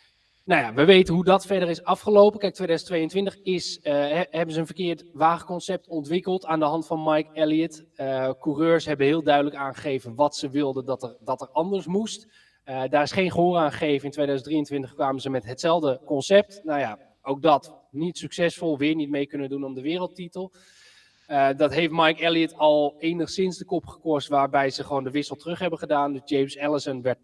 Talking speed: 190 wpm